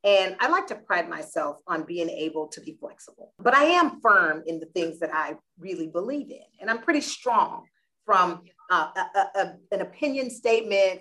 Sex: female